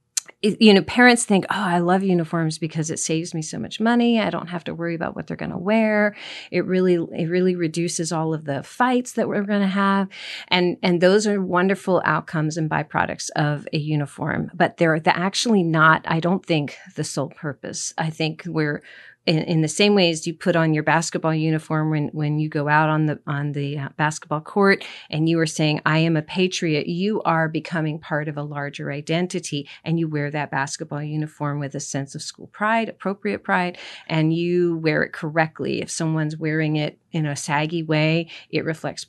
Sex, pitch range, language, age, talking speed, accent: female, 155-190 Hz, English, 40-59, 205 wpm, American